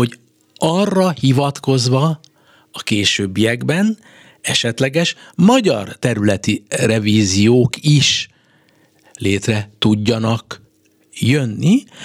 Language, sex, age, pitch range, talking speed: Hungarian, male, 60-79, 105-150 Hz, 60 wpm